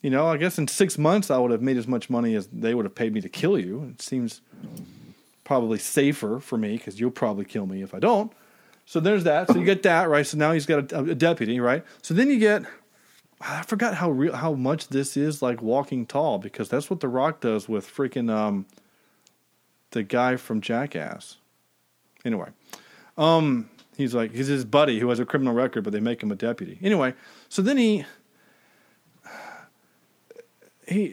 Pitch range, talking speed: 120-195 Hz, 200 wpm